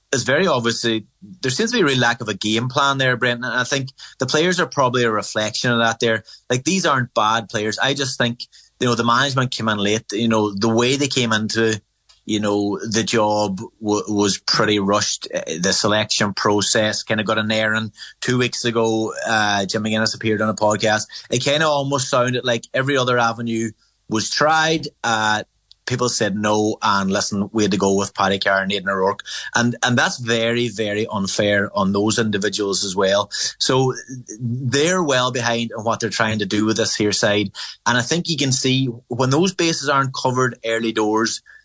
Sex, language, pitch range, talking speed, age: male, English, 105-125 Hz, 200 wpm, 30-49